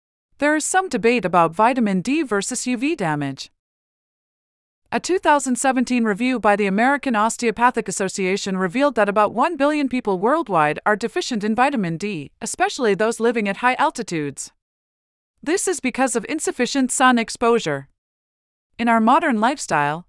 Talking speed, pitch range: 140 wpm, 200-280 Hz